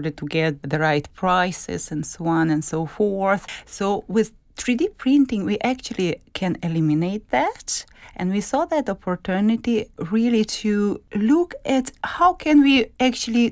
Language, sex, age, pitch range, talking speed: English, female, 30-49, 175-260 Hz, 145 wpm